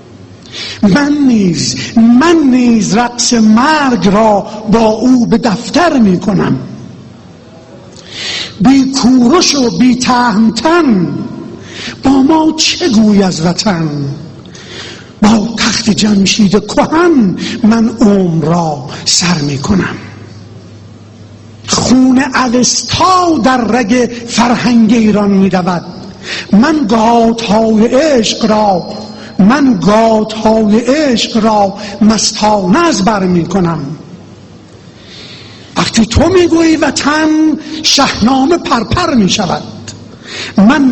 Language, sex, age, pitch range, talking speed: Persian, male, 50-69, 200-270 Hz, 90 wpm